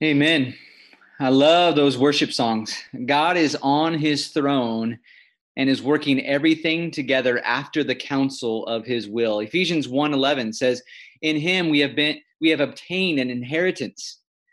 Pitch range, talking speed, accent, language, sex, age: 130-170 Hz, 145 wpm, American, English, male, 30-49